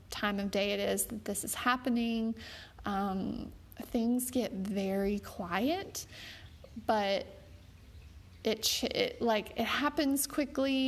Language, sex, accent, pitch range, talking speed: English, female, American, 200-245 Hz, 115 wpm